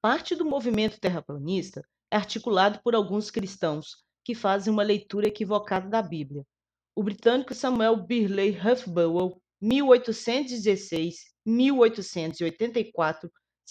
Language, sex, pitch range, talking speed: Portuguese, female, 190-235 Hz, 95 wpm